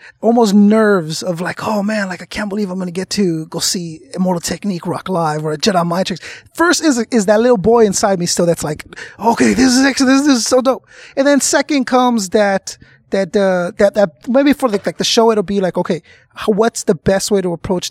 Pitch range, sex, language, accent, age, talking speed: 170-225 Hz, male, English, American, 20-39, 225 wpm